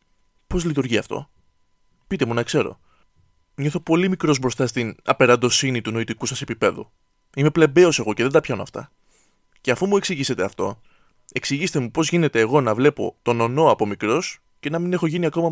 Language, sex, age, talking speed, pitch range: Greek, male, 20-39, 180 wpm, 120-160 Hz